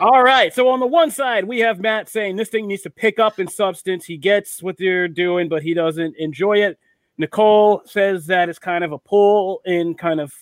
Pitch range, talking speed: 145-185 Hz, 230 wpm